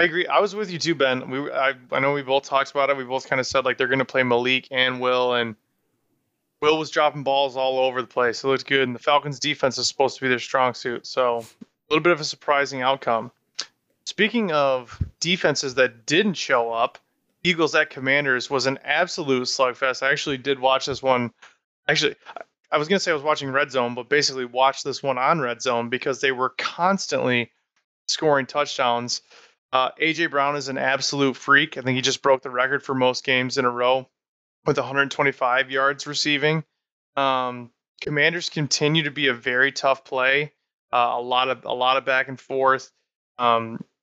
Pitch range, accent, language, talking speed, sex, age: 130-150 Hz, American, English, 205 wpm, male, 20-39